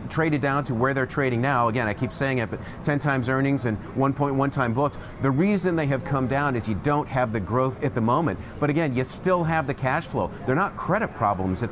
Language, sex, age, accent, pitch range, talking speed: English, male, 40-59, American, 115-150 Hz, 245 wpm